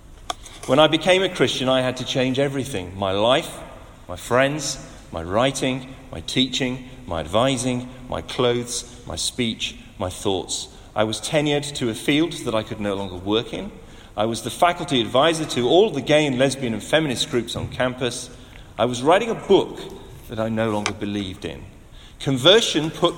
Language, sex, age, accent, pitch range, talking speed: English, male, 40-59, British, 105-140 Hz, 175 wpm